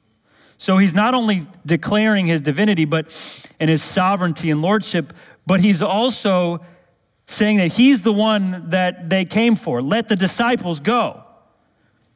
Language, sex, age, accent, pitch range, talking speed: English, male, 30-49, American, 115-165 Hz, 145 wpm